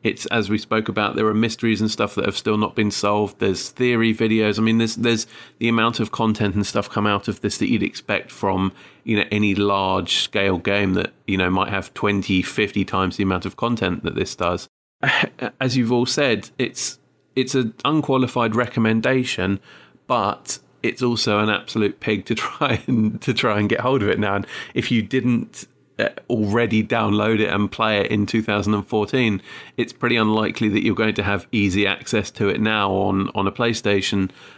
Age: 30-49